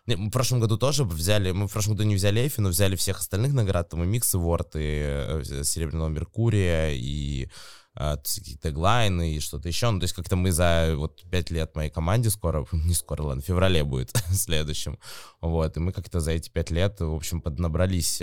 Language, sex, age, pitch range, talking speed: Russian, male, 20-39, 80-100 Hz, 200 wpm